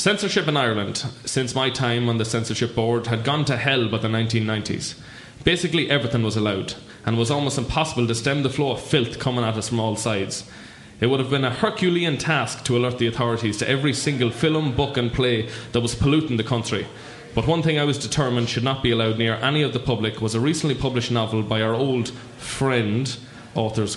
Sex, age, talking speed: male, 20-39, 215 wpm